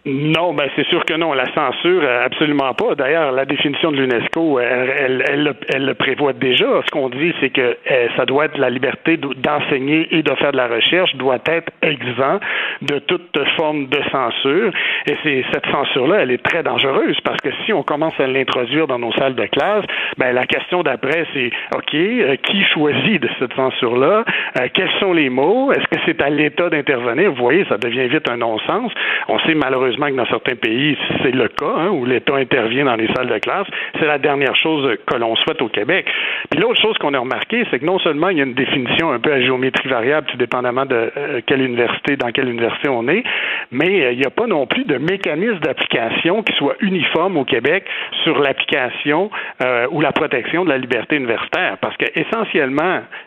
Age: 60-79